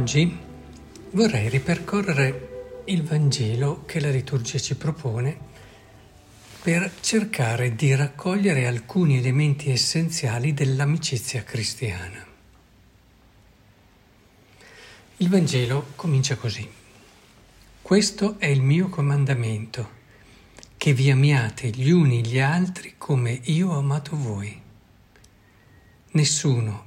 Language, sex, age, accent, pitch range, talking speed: Italian, male, 60-79, native, 110-150 Hz, 90 wpm